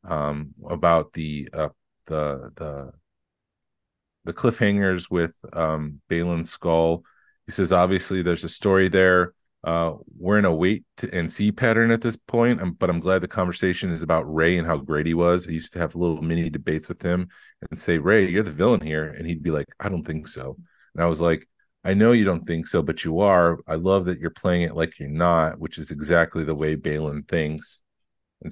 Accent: American